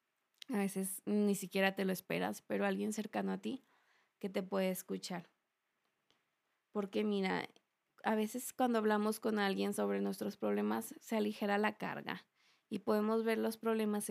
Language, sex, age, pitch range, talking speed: Spanish, female, 20-39, 180-235 Hz, 155 wpm